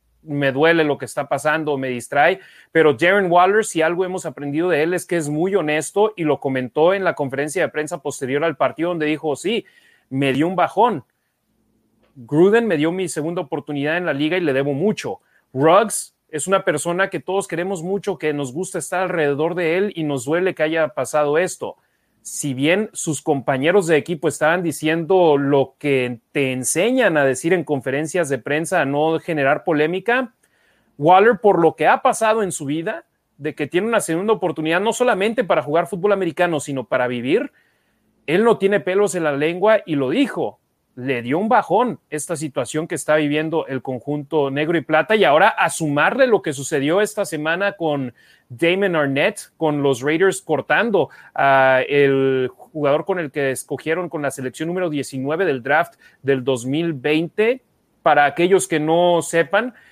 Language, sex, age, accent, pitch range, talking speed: Spanish, male, 30-49, Mexican, 145-180 Hz, 180 wpm